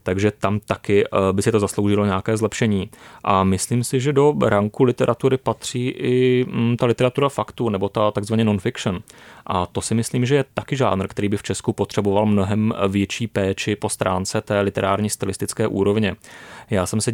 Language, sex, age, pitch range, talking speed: Czech, male, 30-49, 100-115 Hz, 175 wpm